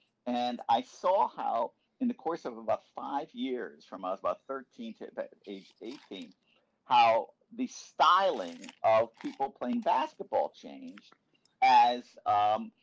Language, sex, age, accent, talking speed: English, male, 50-69, American, 135 wpm